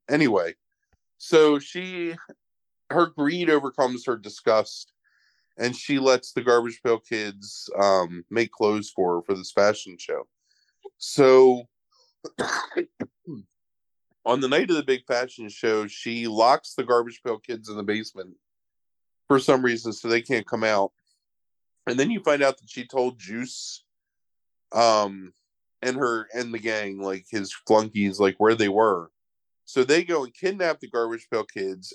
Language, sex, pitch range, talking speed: English, male, 105-135 Hz, 150 wpm